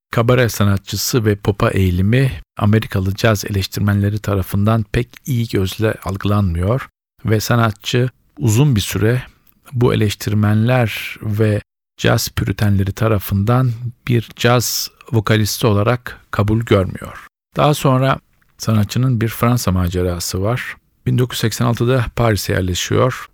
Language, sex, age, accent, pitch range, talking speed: Turkish, male, 50-69, native, 100-120 Hz, 105 wpm